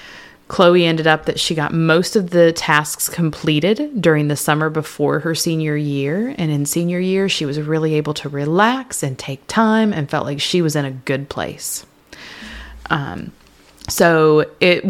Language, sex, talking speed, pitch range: English, female, 175 wpm, 155-200 Hz